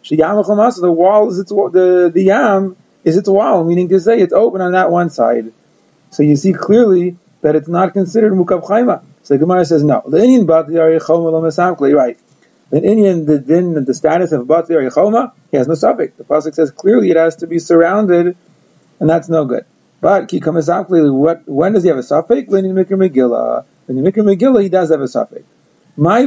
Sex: male